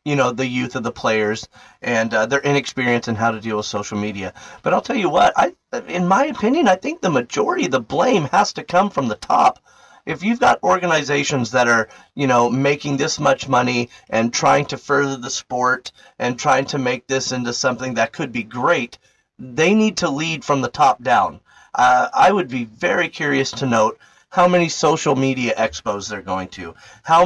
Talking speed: 205 wpm